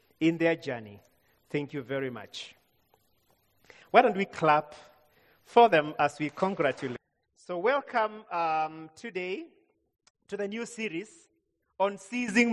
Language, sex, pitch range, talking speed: English, male, 170-220 Hz, 130 wpm